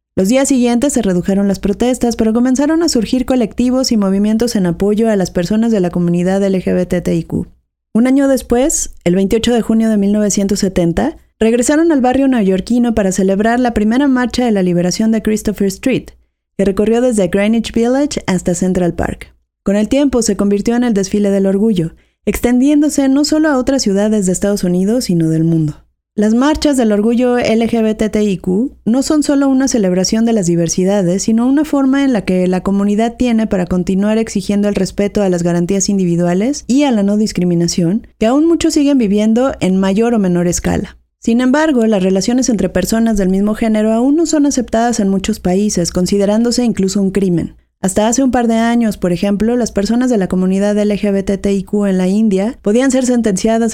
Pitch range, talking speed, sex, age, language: 190-240 Hz, 180 wpm, female, 30-49, Spanish